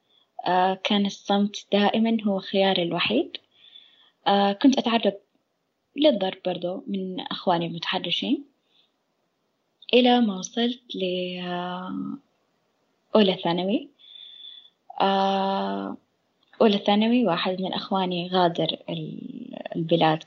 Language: Arabic